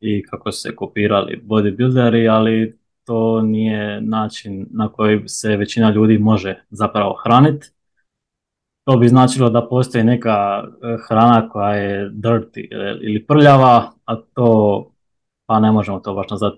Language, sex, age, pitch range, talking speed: Croatian, male, 20-39, 105-115 Hz, 140 wpm